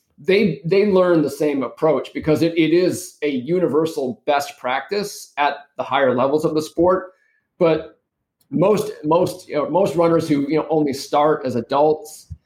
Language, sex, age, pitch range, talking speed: English, male, 40-59, 130-165 Hz, 170 wpm